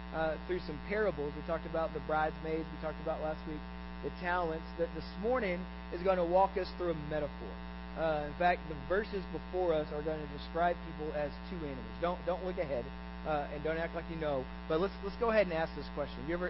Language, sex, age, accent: English, male, 40-59, American